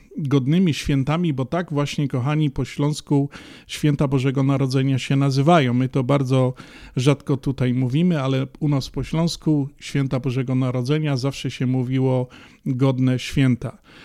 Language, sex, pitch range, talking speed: Polish, male, 130-160 Hz, 135 wpm